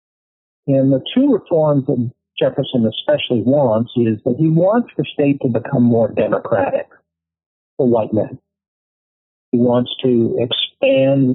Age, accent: 60-79, American